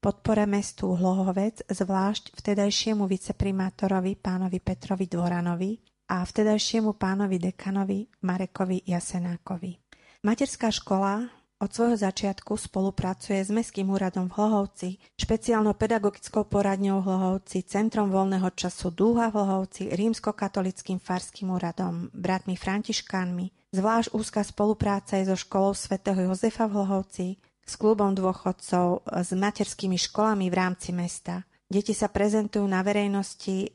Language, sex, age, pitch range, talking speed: Slovak, female, 30-49, 185-210 Hz, 115 wpm